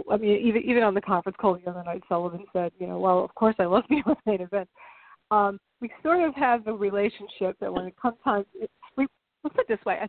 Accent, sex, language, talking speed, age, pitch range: American, female, English, 270 wpm, 40-59, 180-205 Hz